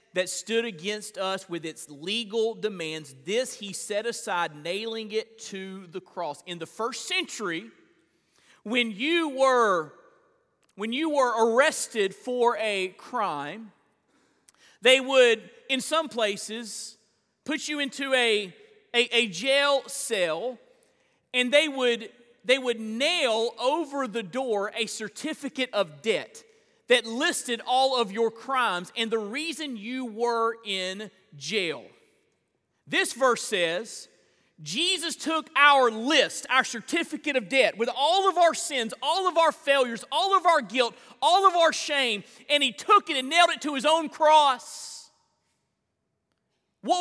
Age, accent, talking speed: 40-59, American, 135 wpm